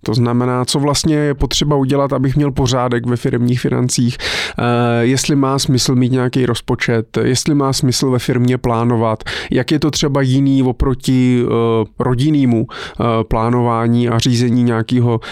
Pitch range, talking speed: 120-140 Hz, 140 wpm